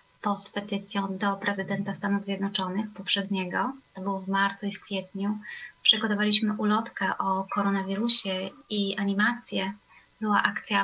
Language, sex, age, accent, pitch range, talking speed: Polish, female, 20-39, native, 195-235 Hz, 115 wpm